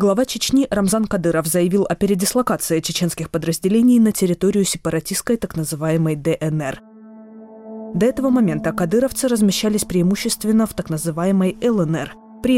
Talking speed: 125 wpm